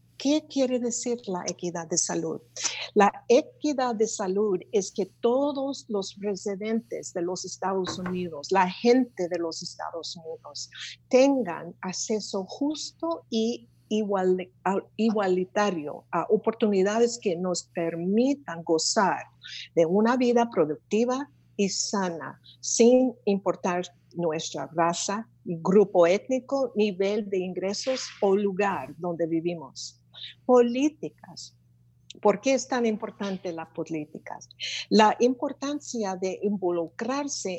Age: 50-69